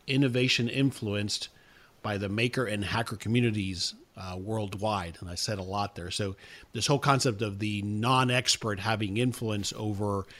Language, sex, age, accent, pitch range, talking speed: English, male, 50-69, American, 100-125 Hz, 150 wpm